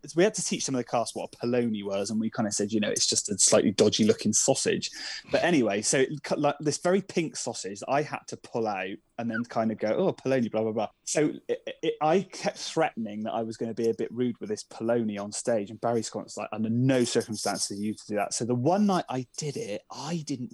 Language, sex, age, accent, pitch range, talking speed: English, male, 20-39, British, 115-160 Hz, 275 wpm